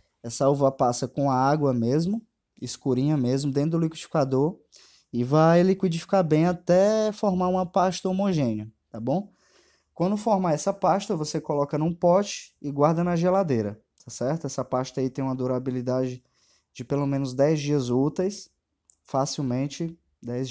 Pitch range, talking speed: 120-160 Hz, 150 wpm